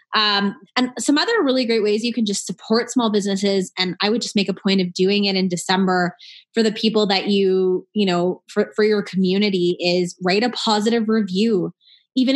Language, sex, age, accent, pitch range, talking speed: English, female, 20-39, American, 185-230 Hz, 205 wpm